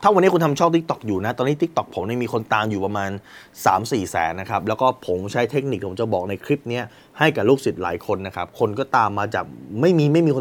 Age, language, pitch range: 20-39, Thai, 105-145 Hz